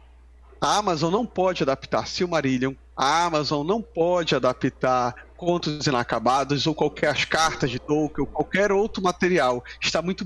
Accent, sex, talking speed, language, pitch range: Brazilian, male, 140 wpm, Portuguese, 145-190 Hz